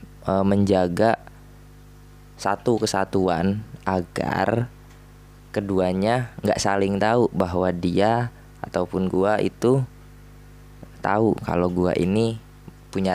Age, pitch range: 20-39, 95-130 Hz